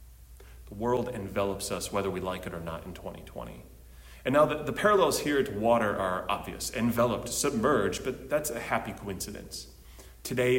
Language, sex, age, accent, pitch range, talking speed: English, male, 30-49, American, 95-125 Hz, 170 wpm